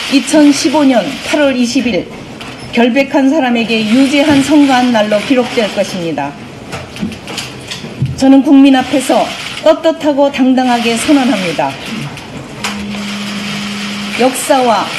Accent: native